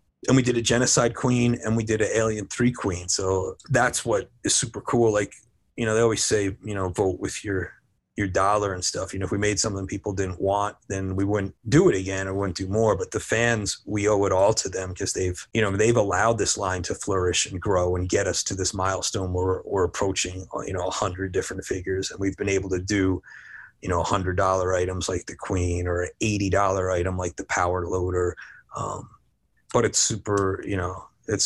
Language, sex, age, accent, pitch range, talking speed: English, male, 30-49, American, 95-105 Hz, 225 wpm